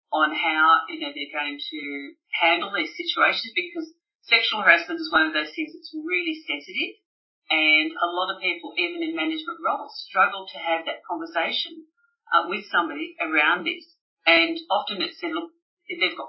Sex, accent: female, Australian